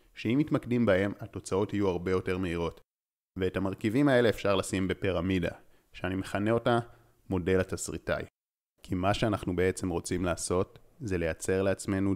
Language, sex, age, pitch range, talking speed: Hebrew, male, 30-49, 90-110 Hz, 140 wpm